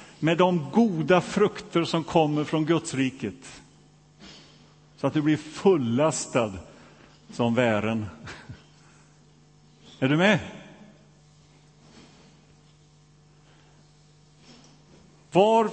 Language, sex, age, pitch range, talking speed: Swedish, male, 50-69, 135-165 Hz, 75 wpm